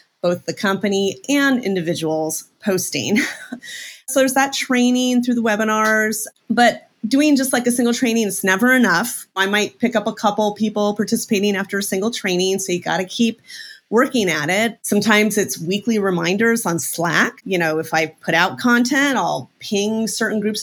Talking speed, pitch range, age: 175 wpm, 185-240 Hz, 30-49